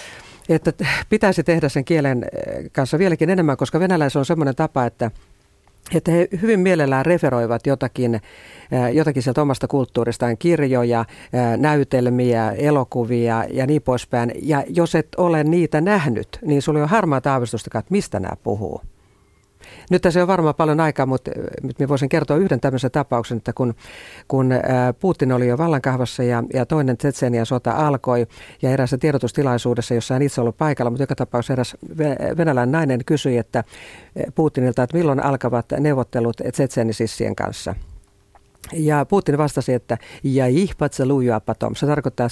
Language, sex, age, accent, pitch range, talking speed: Finnish, female, 50-69, native, 120-155 Hz, 145 wpm